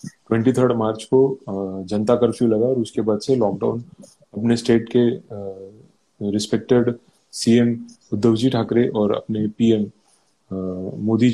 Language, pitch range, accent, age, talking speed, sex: Hindi, 110-130 Hz, native, 30-49, 120 wpm, male